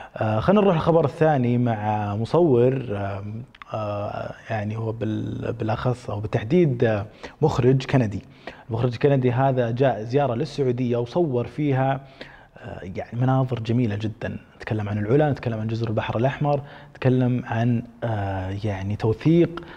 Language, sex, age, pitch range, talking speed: Arabic, male, 20-39, 110-130 Hz, 125 wpm